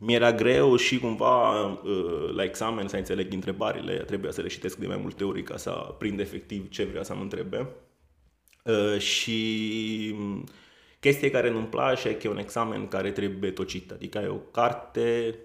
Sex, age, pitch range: male, 20-39, 95-110 Hz